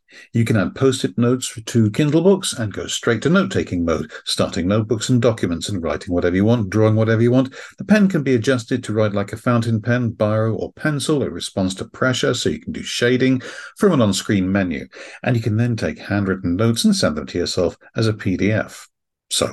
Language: English